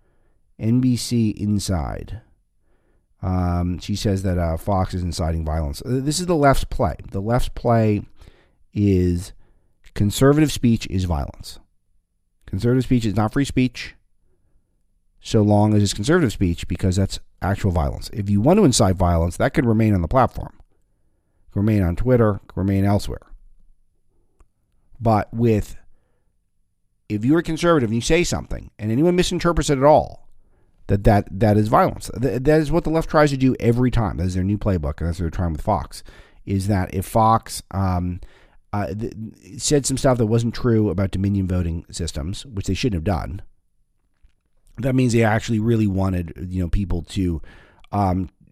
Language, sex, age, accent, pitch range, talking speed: English, male, 50-69, American, 90-115 Hz, 165 wpm